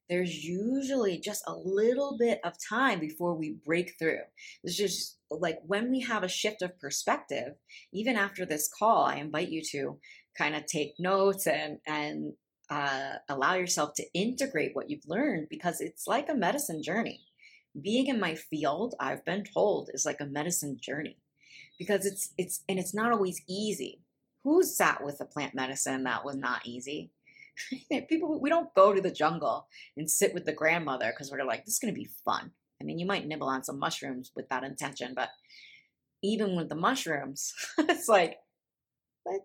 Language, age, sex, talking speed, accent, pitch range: English, 30-49, female, 185 wpm, American, 155-235 Hz